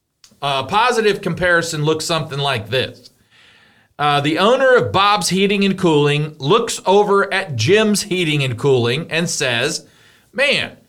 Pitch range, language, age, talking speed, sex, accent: 145-225 Hz, English, 40-59, 140 wpm, male, American